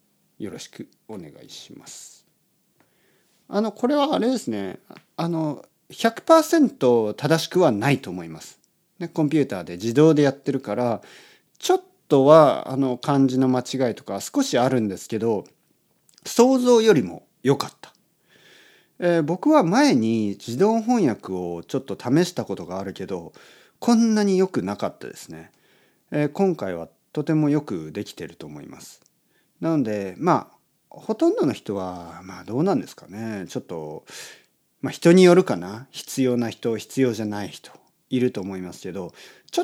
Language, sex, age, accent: Japanese, male, 40-59, native